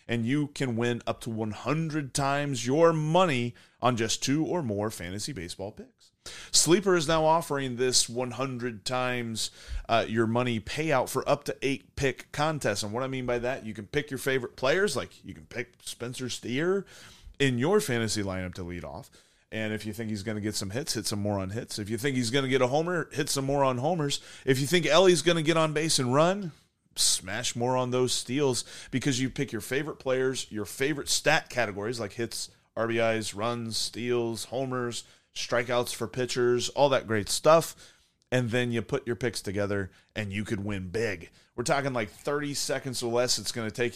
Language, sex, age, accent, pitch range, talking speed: English, male, 30-49, American, 110-140 Hz, 205 wpm